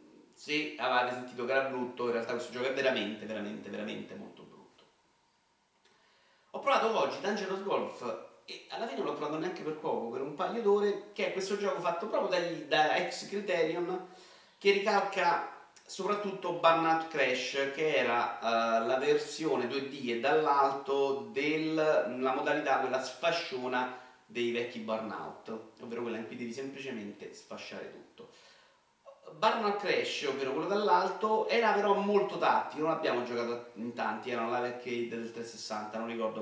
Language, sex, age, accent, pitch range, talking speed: Italian, male, 40-59, native, 120-180 Hz, 150 wpm